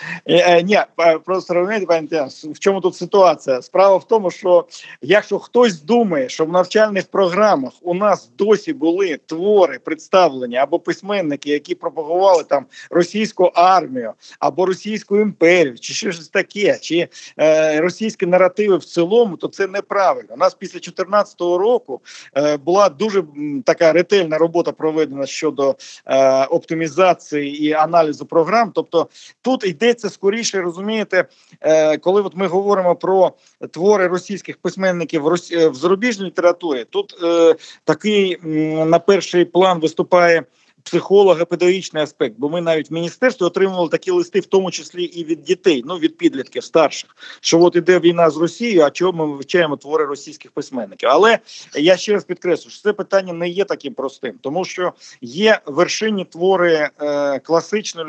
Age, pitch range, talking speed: 50-69, 160-200 Hz, 145 wpm